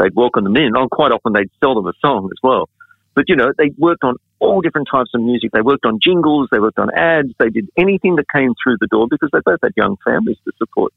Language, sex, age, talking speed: English, male, 50-69, 265 wpm